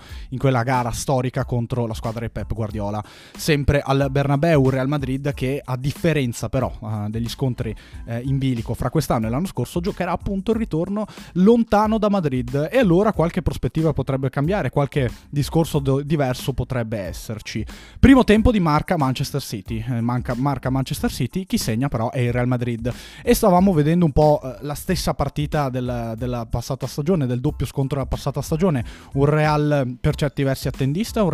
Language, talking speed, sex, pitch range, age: Italian, 170 wpm, male, 120-150 Hz, 20-39